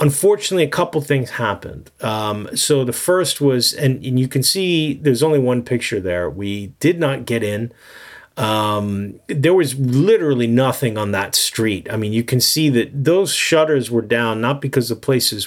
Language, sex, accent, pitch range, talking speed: English, male, American, 110-140 Hz, 180 wpm